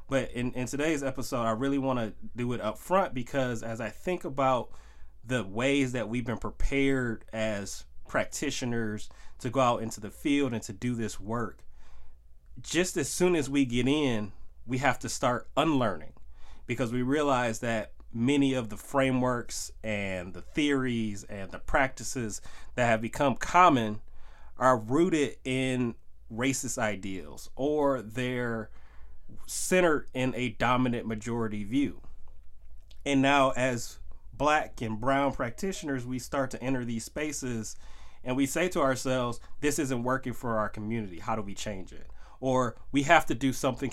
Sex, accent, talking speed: male, American, 155 wpm